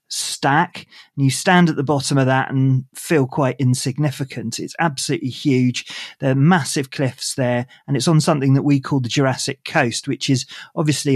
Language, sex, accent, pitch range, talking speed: English, male, British, 125-145 Hz, 185 wpm